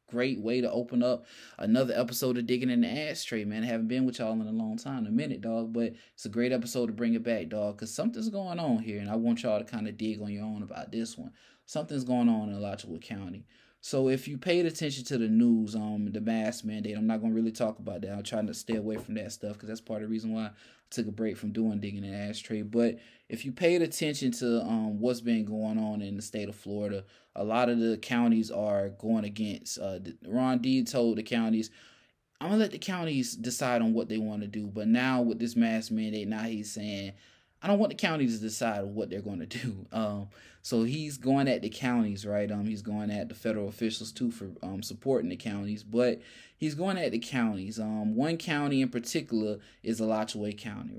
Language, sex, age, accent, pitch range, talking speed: English, male, 20-39, American, 110-125 Hz, 240 wpm